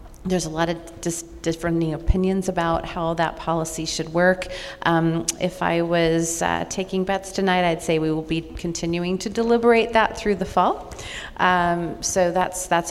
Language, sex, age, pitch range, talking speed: English, female, 40-59, 150-170 Hz, 165 wpm